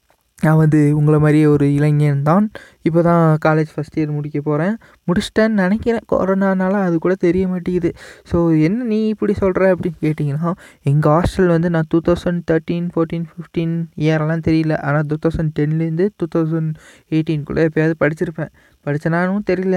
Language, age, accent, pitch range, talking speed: Tamil, 20-39, native, 155-180 Hz, 145 wpm